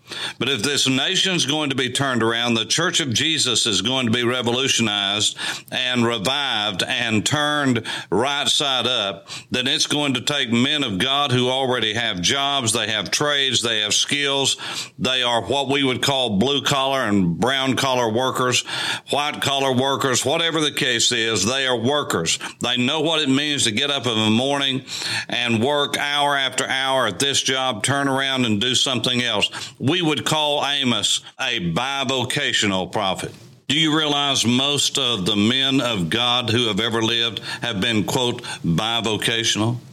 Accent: American